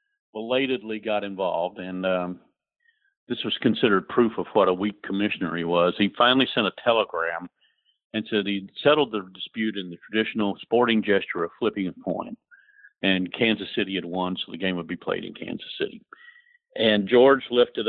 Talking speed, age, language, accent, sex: 180 wpm, 50-69, English, American, male